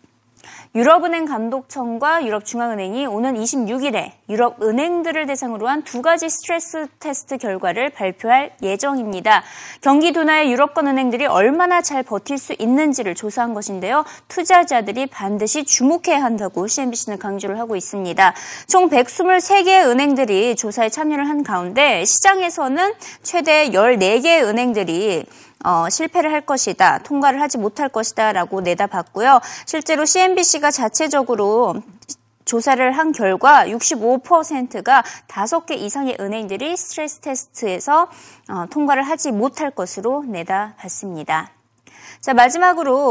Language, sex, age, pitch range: Korean, female, 20-39, 215-310 Hz